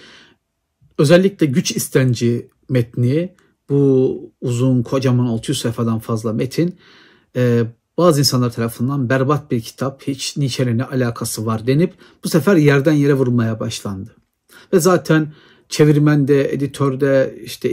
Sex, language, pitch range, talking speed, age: male, Turkish, 120-145 Hz, 110 wpm, 50-69